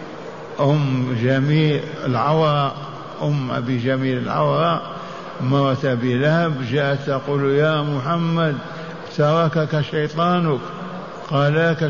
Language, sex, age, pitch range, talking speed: Arabic, male, 50-69, 135-160 Hz, 80 wpm